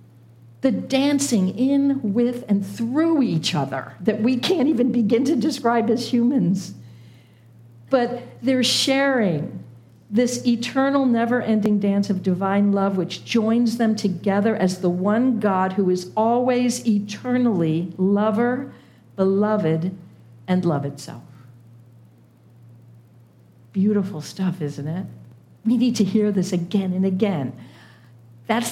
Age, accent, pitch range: 50-69, American, 160-230 Hz